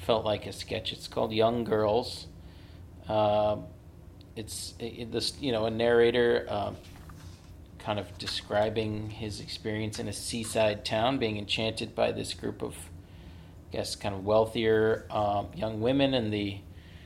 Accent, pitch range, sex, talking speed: American, 90-110 Hz, male, 150 wpm